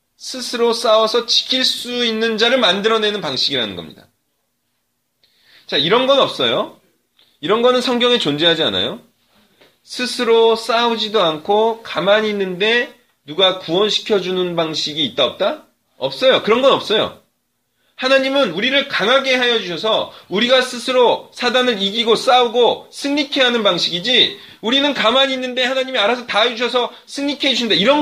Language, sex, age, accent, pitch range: Korean, male, 30-49, native, 175-240 Hz